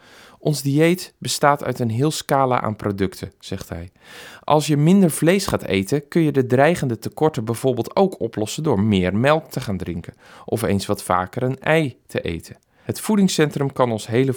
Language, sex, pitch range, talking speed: Dutch, male, 100-140 Hz, 185 wpm